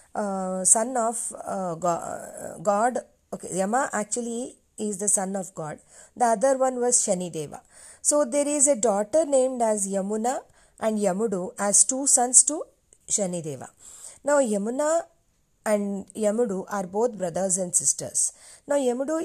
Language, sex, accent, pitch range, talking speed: Telugu, female, native, 190-240 Hz, 145 wpm